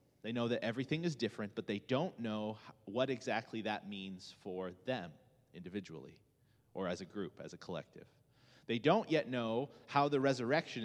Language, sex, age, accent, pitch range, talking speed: English, male, 30-49, American, 115-140 Hz, 170 wpm